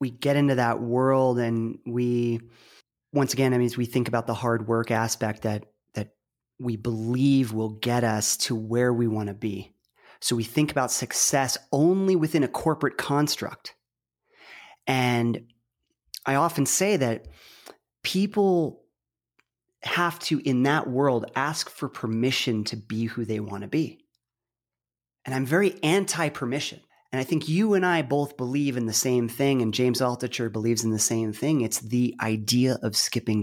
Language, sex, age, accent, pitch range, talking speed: English, male, 30-49, American, 115-155 Hz, 165 wpm